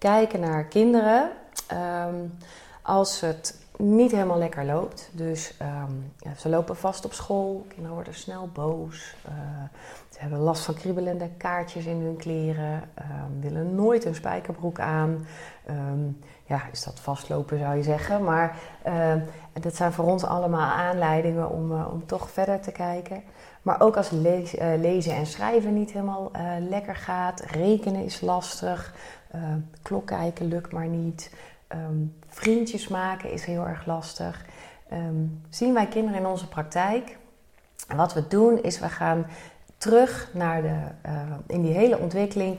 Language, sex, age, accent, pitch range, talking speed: Dutch, female, 30-49, Dutch, 155-195 Hz, 160 wpm